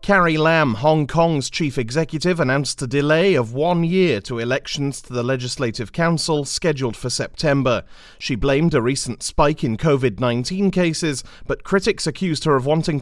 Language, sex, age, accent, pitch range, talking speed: English, male, 30-49, British, 120-155 Hz, 160 wpm